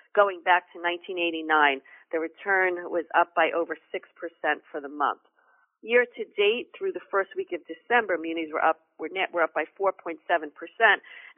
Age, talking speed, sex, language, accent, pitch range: 40-59, 140 wpm, female, English, American, 160-215 Hz